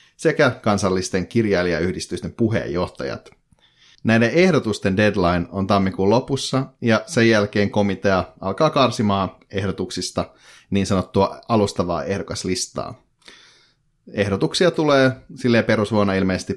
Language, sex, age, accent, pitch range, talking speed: Finnish, male, 30-49, native, 95-120 Hz, 95 wpm